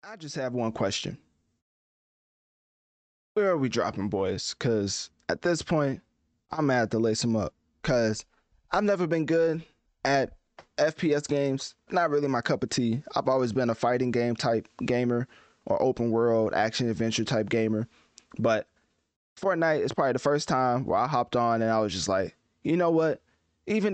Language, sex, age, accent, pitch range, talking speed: English, male, 20-39, American, 115-150 Hz, 175 wpm